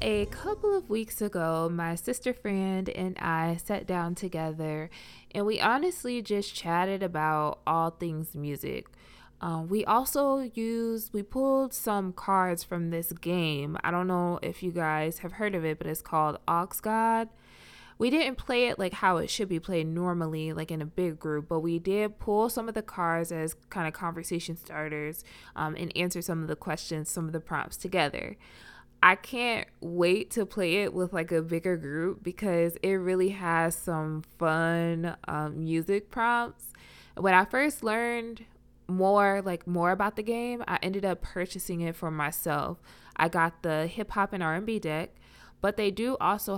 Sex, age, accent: female, 20-39, American